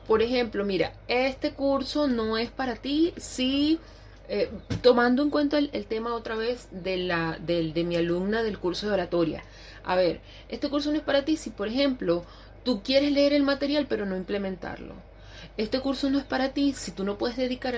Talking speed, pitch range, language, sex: 190 wpm, 190-260 Hz, Spanish, female